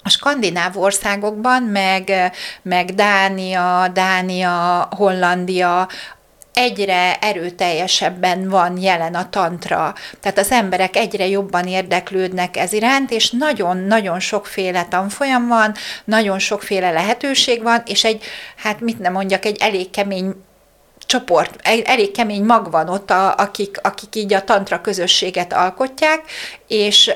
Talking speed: 120 wpm